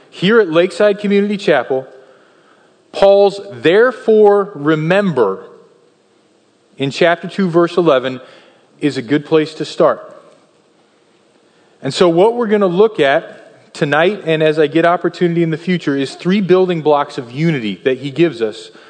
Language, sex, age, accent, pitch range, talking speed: English, male, 30-49, American, 155-200 Hz, 145 wpm